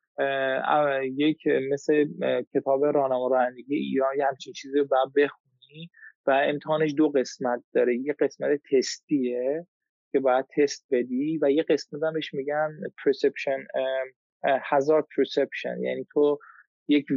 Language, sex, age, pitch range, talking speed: Persian, male, 20-39, 135-160 Hz, 130 wpm